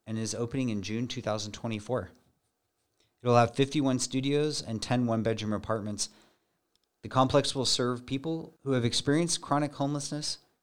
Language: English